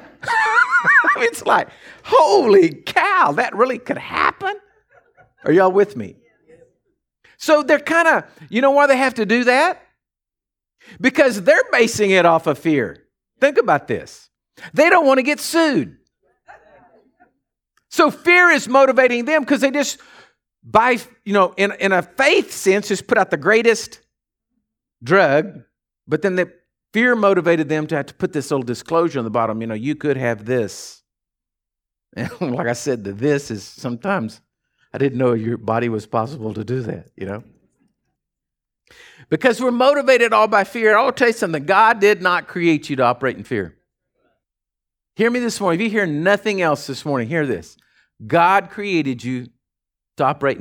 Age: 50-69